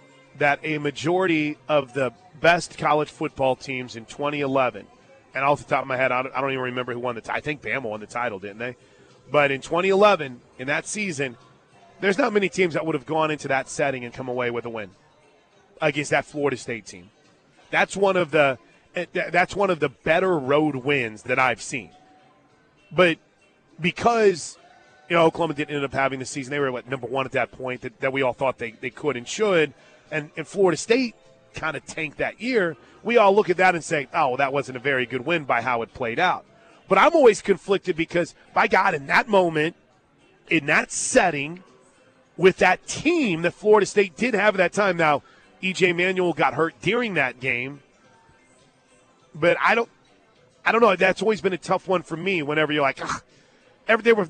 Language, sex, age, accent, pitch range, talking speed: English, male, 30-49, American, 135-190 Hz, 210 wpm